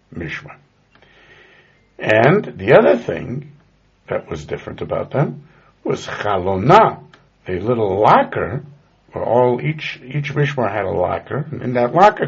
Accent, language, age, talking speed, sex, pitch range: American, English, 60-79, 125 wpm, male, 105-145 Hz